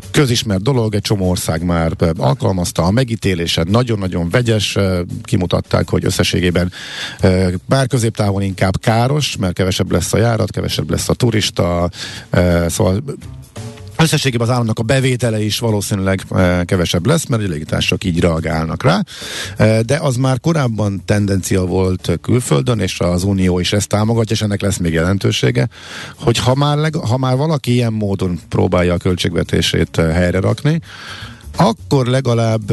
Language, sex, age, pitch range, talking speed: Hungarian, male, 50-69, 95-125 Hz, 135 wpm